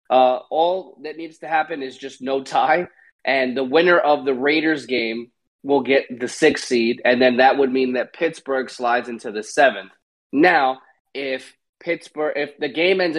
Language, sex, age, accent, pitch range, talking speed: English, male, 20-39, American, 125-150 Hz, 180 wpm